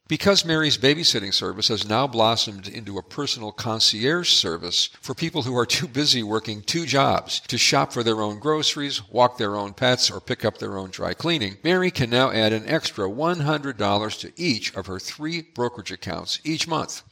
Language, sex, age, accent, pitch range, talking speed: English, male, 50-69, American, 100-140 Hz, 190 wpm